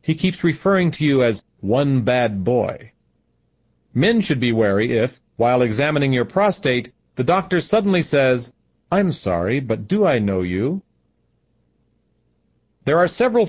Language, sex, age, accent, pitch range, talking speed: English, male, 40-59, American, 120-165 Hz, 140 wpm